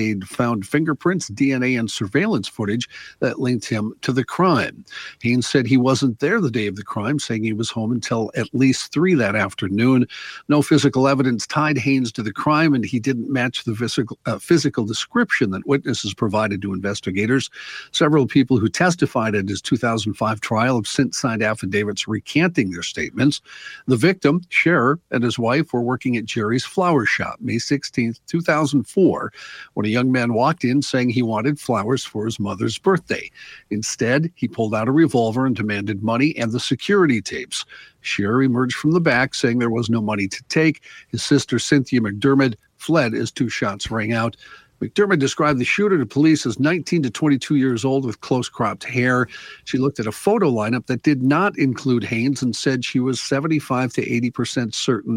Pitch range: 115-145 Hz